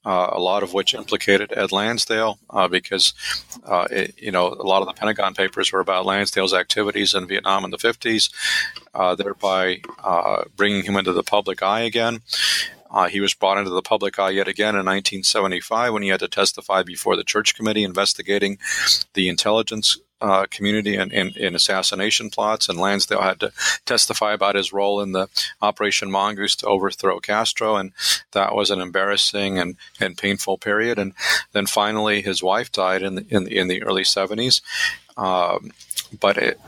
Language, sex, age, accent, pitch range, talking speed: English, male, 40-59, American, 95-105 Hz, 170 wpm